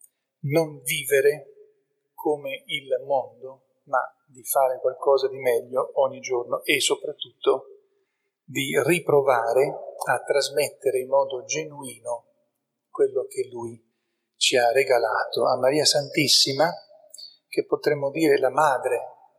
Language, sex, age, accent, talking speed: Italian, male, 40-59, native, 110 wpm